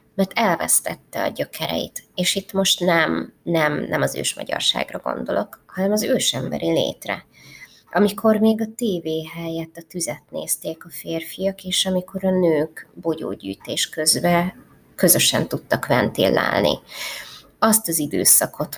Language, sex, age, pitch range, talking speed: Hungarian, female, 20-39, 165-190 Hz, 125 wpm